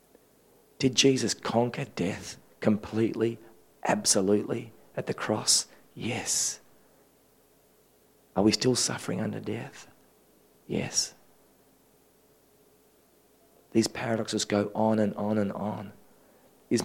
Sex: male